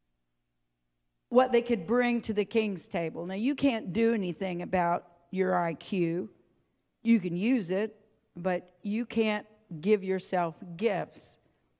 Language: English